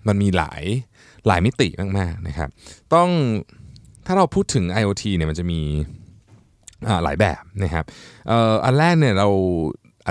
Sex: male